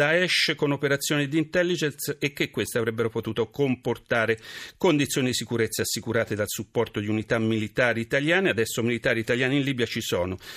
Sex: male